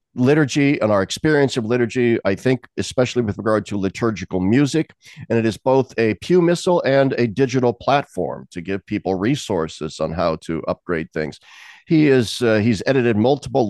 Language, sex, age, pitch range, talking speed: English, male, 50-69, 95-120 Hz, 175 wpm